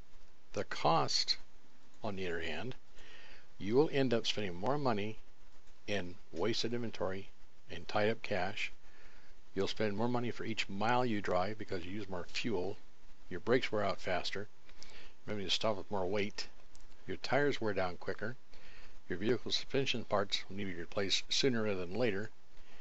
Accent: American